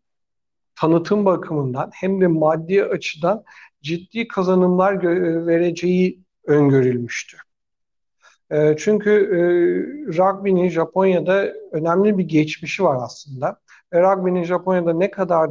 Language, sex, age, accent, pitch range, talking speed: Turkish, male, 60-79, native, 155-200 Hz, 100 wpm